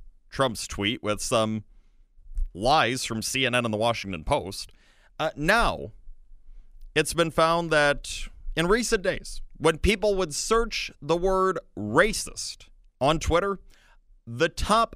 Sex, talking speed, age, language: male, 125 wpm, 30-49, English